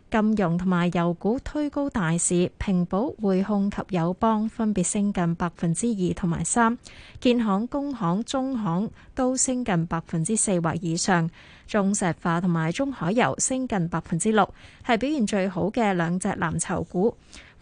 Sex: female